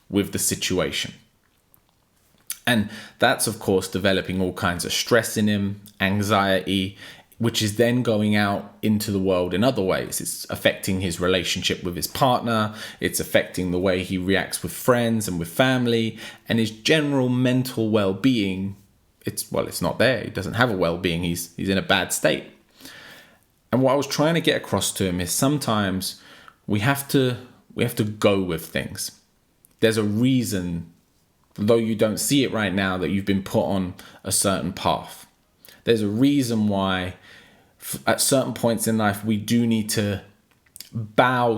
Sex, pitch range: male, 95-115 Hz